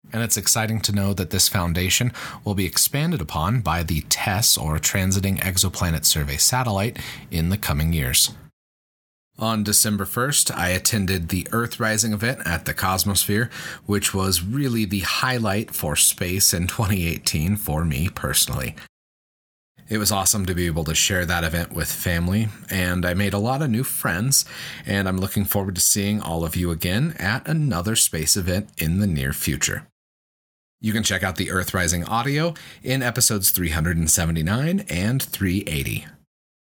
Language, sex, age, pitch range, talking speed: English, male, 30-49, 90-120 Hz, 160 wpm